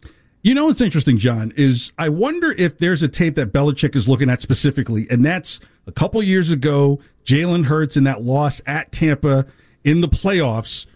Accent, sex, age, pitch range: American, male, 50-69, 135-175 Hz